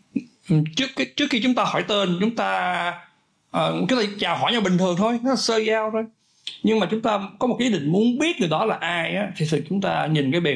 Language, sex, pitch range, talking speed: Vietnamese, male, 150-205 Hz, 250 wpm